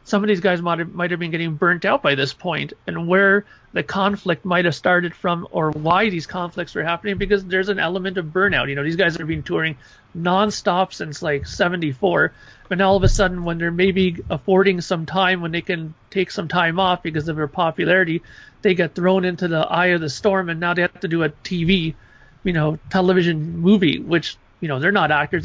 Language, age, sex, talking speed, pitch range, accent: English, 40-59, male, 225 wpm, 160-195 Hz, American